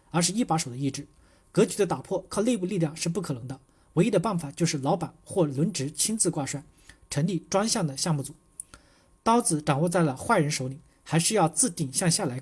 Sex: male